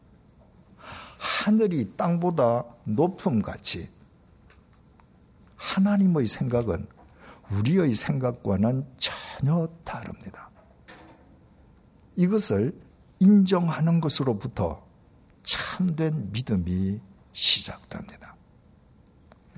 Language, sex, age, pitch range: Korean, male, 60-79, 105-175 Hz